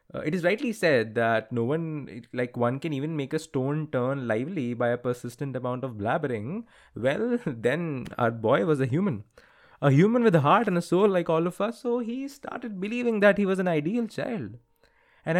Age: 20-39